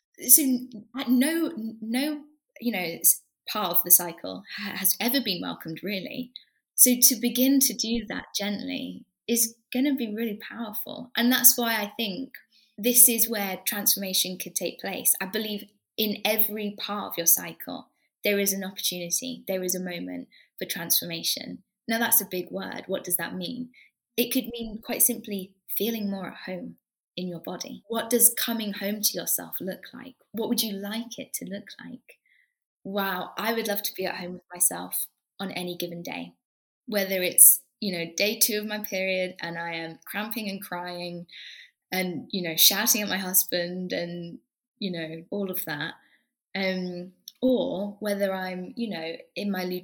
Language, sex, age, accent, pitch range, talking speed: English, female, 10-29, British, 180-230 Hz, 170 wpm